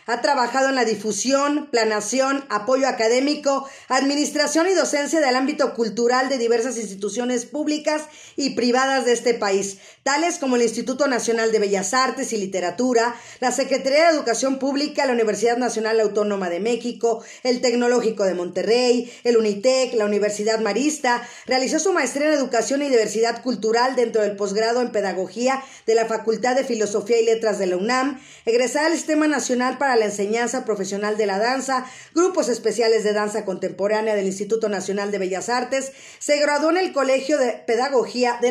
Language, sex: Spanish, female